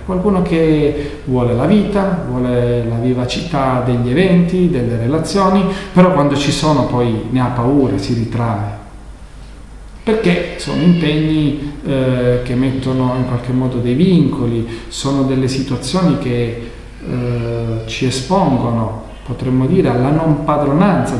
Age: 40-59